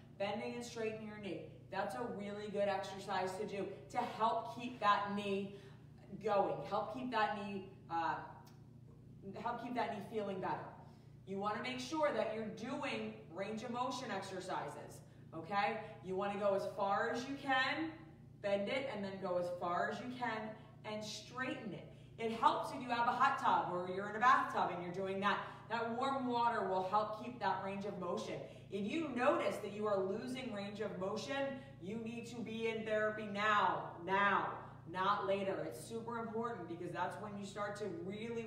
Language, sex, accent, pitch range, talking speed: English, female, American, 190-235 Hz, 185 wpm